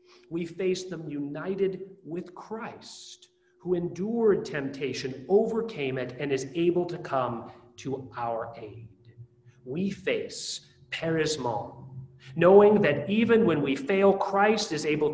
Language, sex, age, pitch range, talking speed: English, male, 40-59, 140-205 Hz, 125 wpm